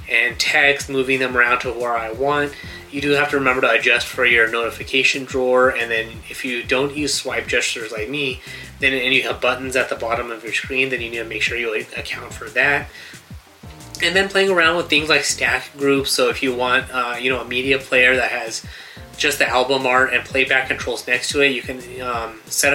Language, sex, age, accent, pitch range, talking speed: English, male, 20-39, American, 120-140 Hz, 225 wpm